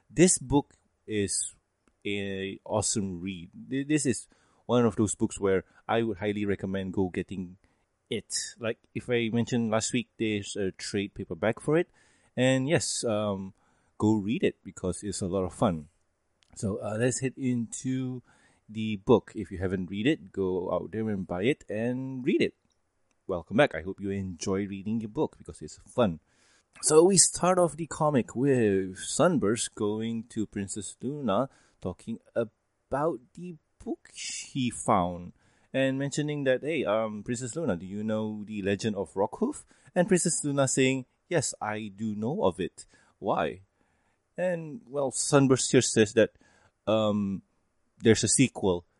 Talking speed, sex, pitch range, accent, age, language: 160 wpm, male, 100-140 Hz, Malaysian, 20-39, English